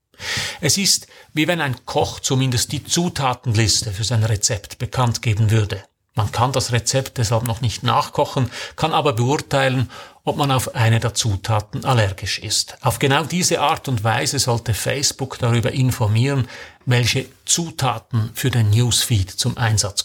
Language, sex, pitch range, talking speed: German, male, 110-130 Hz, 155 wpm